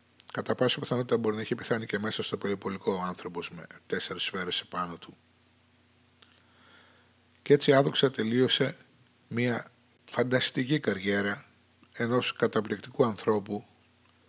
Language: Greek